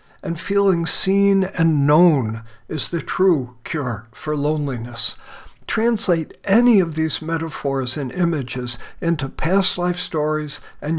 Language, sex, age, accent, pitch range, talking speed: English, male, 60-79, American, 140-175 Hz, 125 wpm